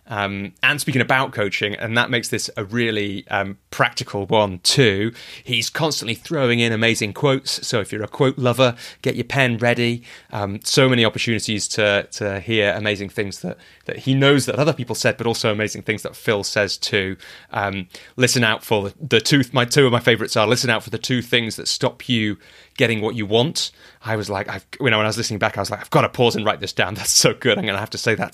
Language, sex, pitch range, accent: English, male, 105-125 Hz, British